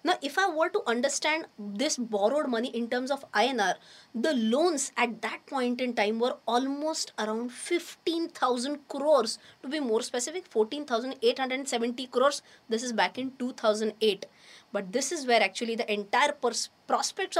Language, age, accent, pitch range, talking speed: English, 20-39, Indian, 220-295 Hz, 155 wpm